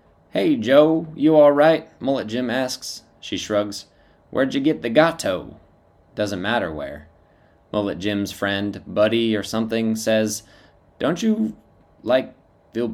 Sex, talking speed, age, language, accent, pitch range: male, 135 wpm, 20-39, English, American, 90-120 Hz